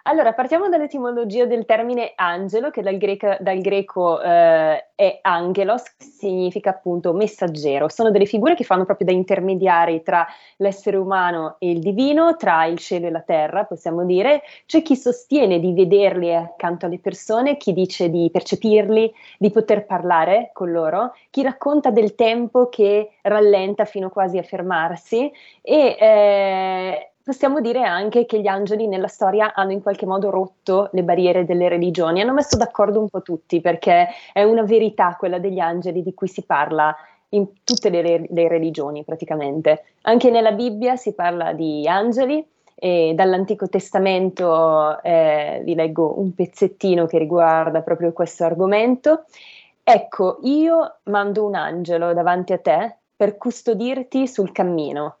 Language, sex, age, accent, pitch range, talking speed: Italian, female, 20-39, native, 175-225 Hz, 155 wpm